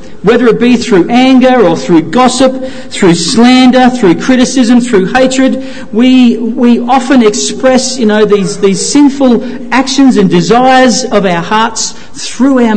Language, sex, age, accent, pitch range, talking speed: English, male, 40-59, Australian, 195-255 Hz, 145 wpm